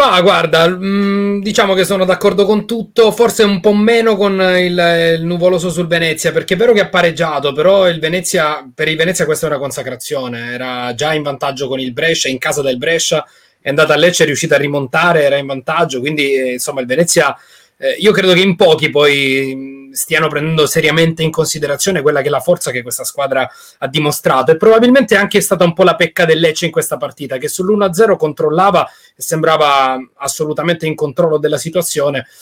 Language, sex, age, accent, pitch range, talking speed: Italian, male, 30-49, native, 145-195 Hz, 195 wpm